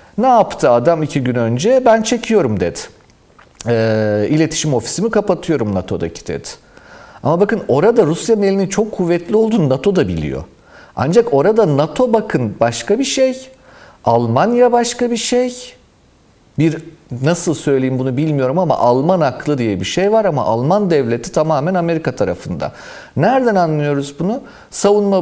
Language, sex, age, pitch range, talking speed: Turkish, male, 40-59, 140-205 Hz, 140 wpm